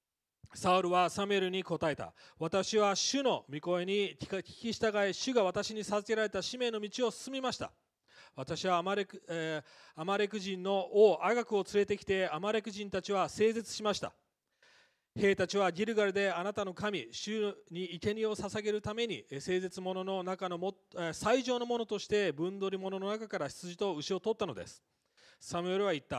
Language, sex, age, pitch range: English, male, 40-59, 170-210 Hz